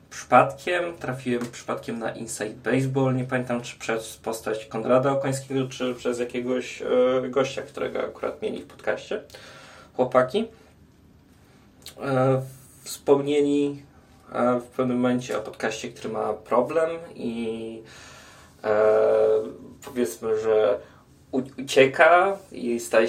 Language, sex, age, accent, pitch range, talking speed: Polish, male, 20-39, native, 115-140 Hz, 100 wpm